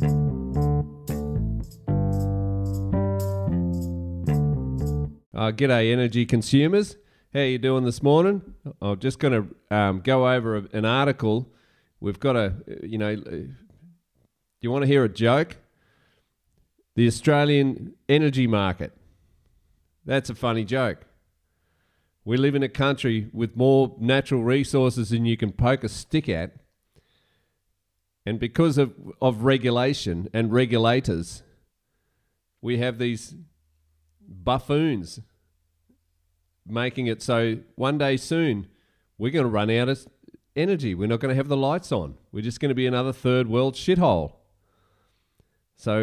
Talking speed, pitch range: 125 wpm, 95-130 Hz